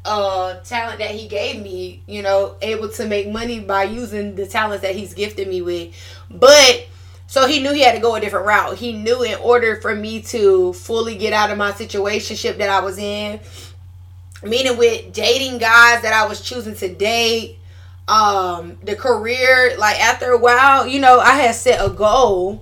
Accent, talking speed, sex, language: American, 195 wpm, female, English